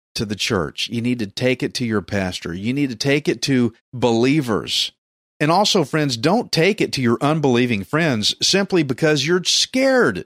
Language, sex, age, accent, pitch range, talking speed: English, male, 40-59, American, 110-160 Hz, 185 wpm